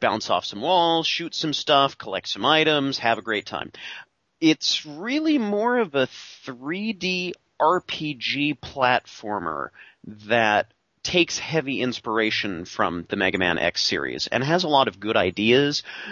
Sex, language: male, English